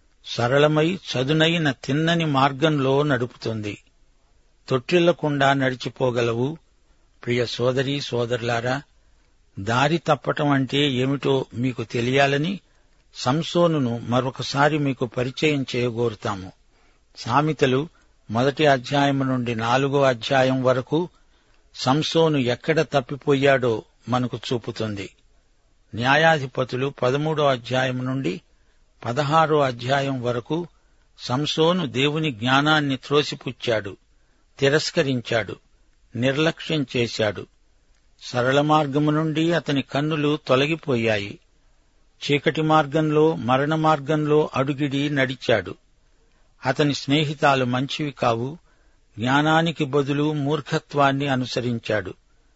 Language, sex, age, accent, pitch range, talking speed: Telugu, male, 60-79, native, 125-150 Hz, 75 wpm